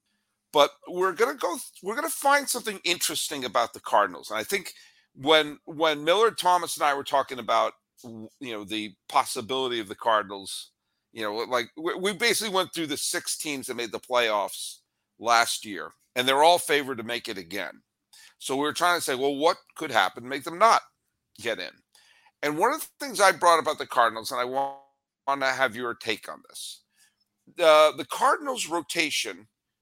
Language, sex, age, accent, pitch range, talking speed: English, male, 50-69, American, 135-180 Hz, 190 wpm